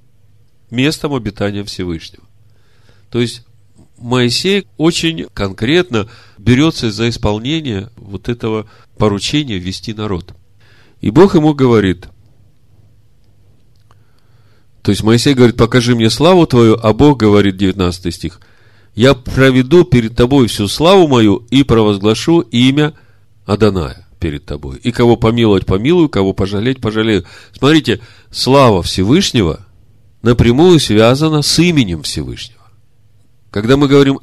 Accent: native